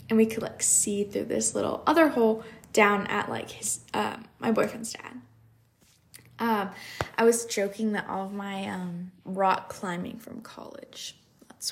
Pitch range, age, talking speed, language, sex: 200-245 Hz, 10-29, 165 wpm, English, female